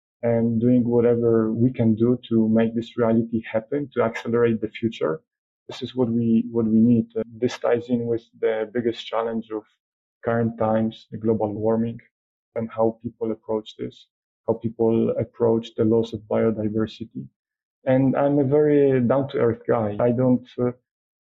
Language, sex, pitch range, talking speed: English, male, 115-125 Hz, 165 wpm